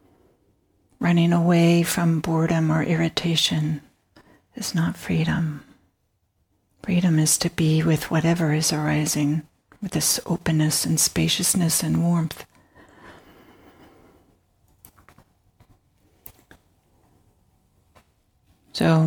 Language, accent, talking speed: English, American, 80 wpm